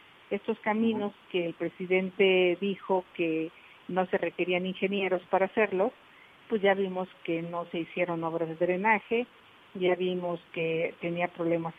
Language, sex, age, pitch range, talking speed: Spanish, female, 50-69, 175-220 Hz, 145 wpm